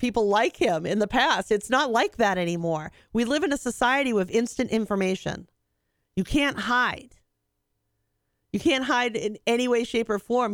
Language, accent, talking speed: English, American, 175 wpm